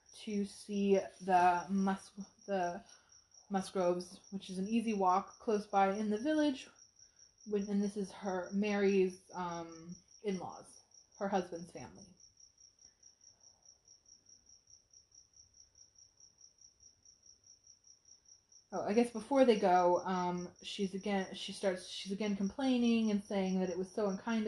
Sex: female